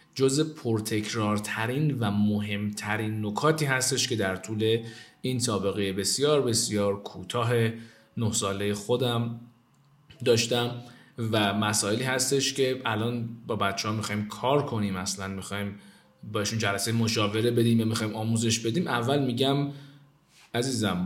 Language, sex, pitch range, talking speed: Persian, male, 105-140 Hz, 120 wpm